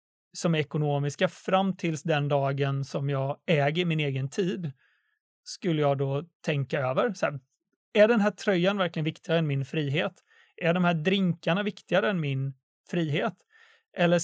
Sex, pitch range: male, 155-200 Hz